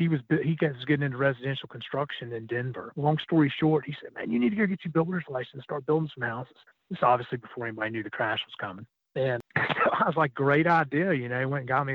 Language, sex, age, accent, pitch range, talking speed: English, male, 40-59, American, 120-150 Hz, 250 wpm